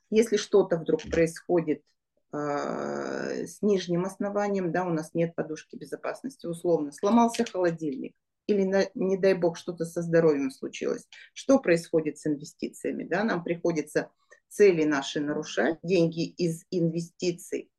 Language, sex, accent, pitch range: Russian, female, native, 155-195 Hz